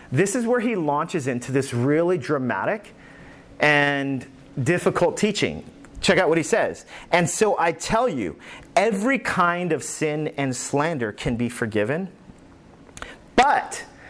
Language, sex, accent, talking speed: English, male, American, 135 wpm